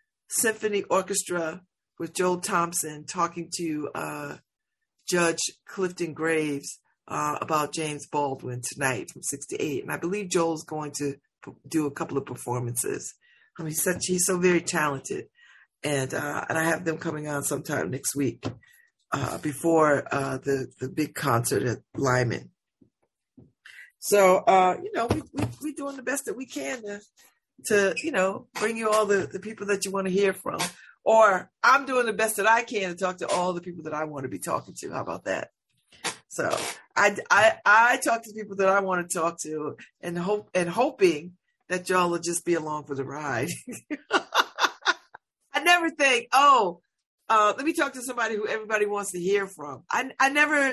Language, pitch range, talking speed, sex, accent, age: English, 155-220 Hz, 185 wpm, female, American, 50-69